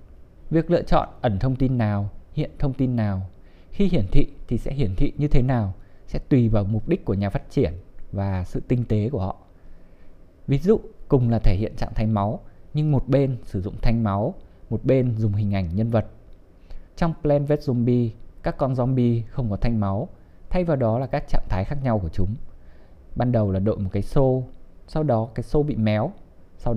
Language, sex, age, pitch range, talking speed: Vietnamese, male, 20-39, 100-135 Hz, 215 wpm